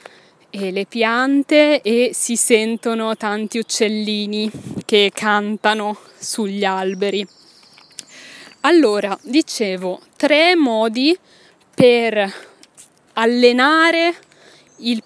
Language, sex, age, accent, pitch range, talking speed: Italian, female, 20-39, native, 210-255 Hz, 75 wpm